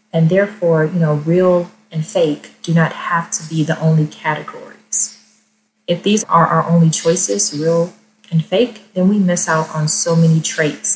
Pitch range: 155-190 Hz